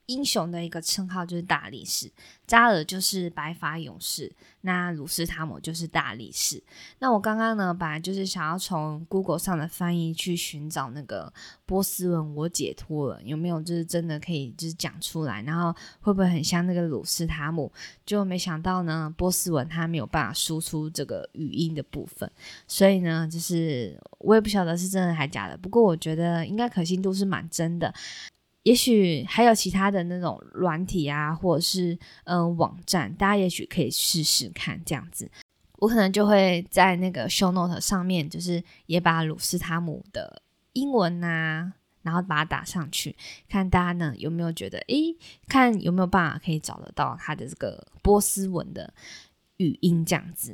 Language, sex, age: Chinese, female, 20-39